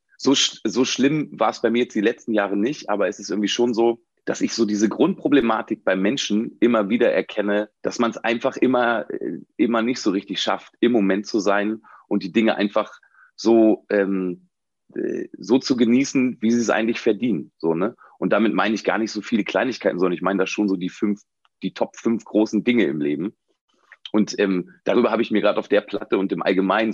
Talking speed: 210 wpm